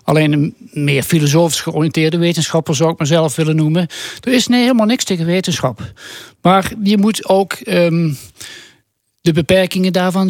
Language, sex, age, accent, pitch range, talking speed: Dutch, male, 60-79, Dutch, 150-195 Hz, 150 wpm